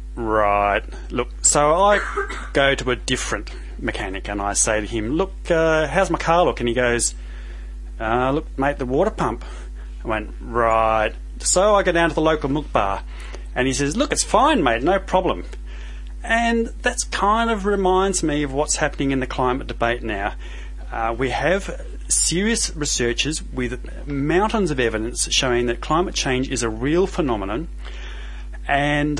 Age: 30-49